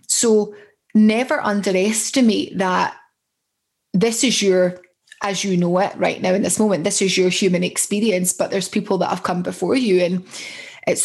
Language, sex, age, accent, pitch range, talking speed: English, female, 20-39, British, 185-220 Hz, 170 wpm